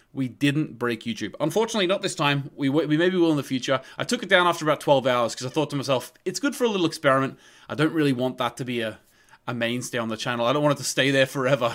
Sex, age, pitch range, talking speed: male, 20-39, 125-155 Hz, 280 wpm